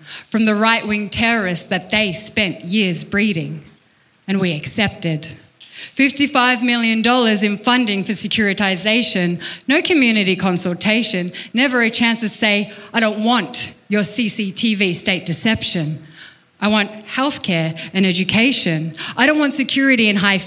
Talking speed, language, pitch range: 130 wpm, English, 180-225 Hz